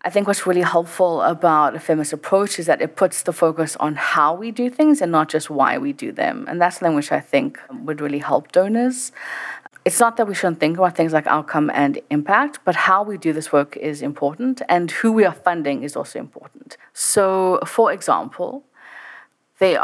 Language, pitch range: English, 155-210 Hz